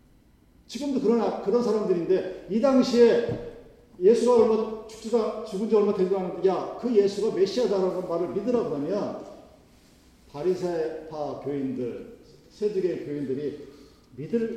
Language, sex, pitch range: Korean, male, 195-270 Hz